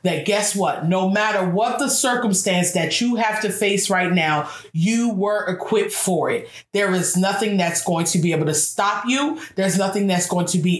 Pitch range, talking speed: 190-255 Hz, 205 wpm